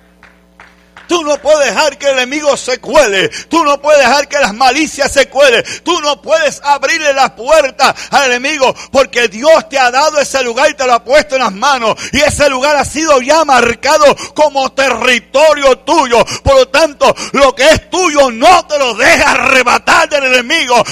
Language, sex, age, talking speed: English, male, 60-79, 185 wpm